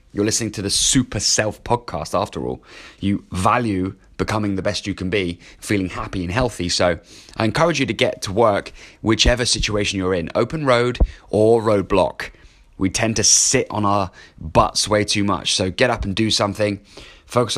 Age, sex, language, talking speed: 20-39, male, English, 185 wpm